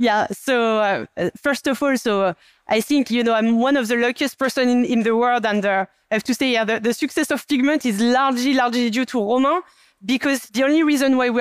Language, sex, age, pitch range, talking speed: English, female, 20-39, 230-285 Hz, 240 wpm